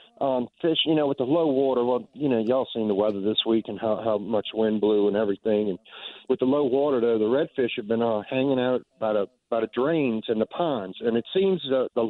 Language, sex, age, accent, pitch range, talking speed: English, male, 50-69, American, 110-145 Hz, 255 wpm